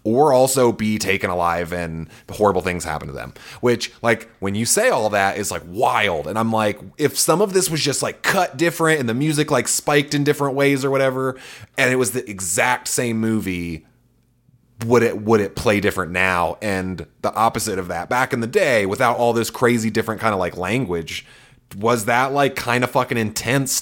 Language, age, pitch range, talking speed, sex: English, 20-39, 100-125 Hz, 210 wpm, male